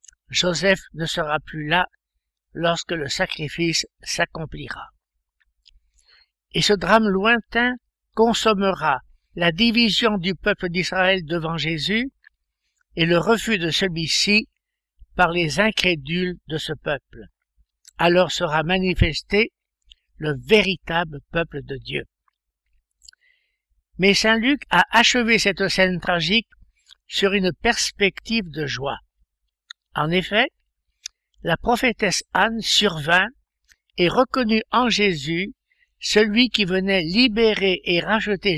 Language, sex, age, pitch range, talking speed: French, male, 60-79, 155-210 Hz, 105 wpm